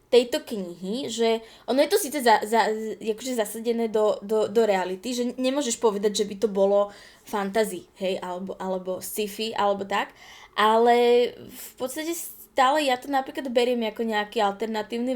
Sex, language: female, English